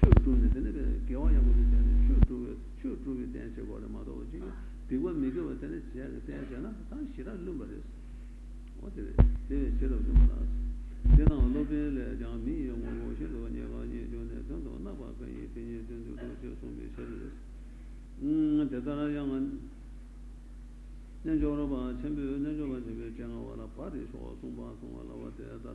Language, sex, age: Italian, male, 60-79